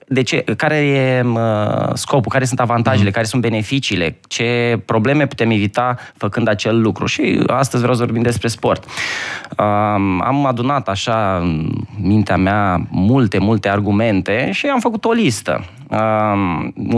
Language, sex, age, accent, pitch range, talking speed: Romanian, male, 20-39, native, 105-135 Hz, 130 wpm